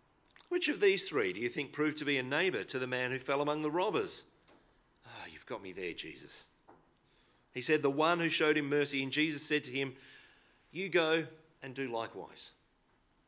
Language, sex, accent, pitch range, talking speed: English, male, Australian, 135-160 Hz, 200 wpm